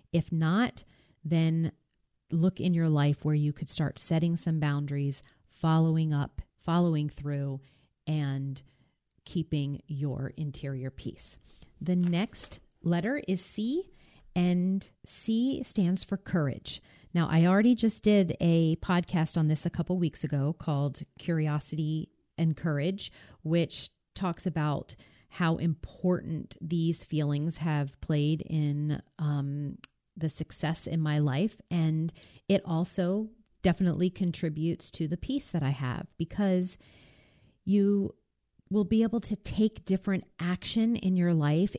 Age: 40-59